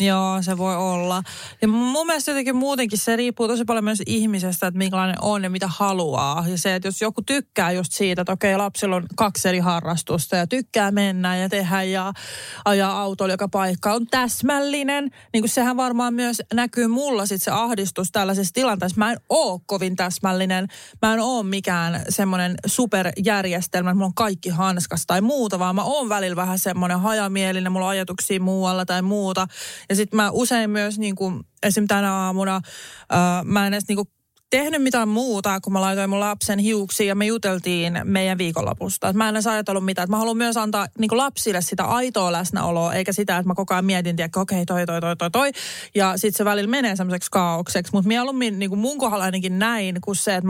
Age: 20-39